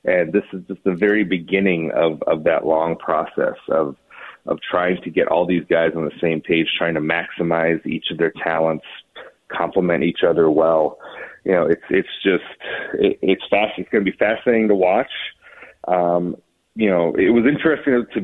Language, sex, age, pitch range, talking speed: English, male, 30-49, 85-105 Hz, 185 wpm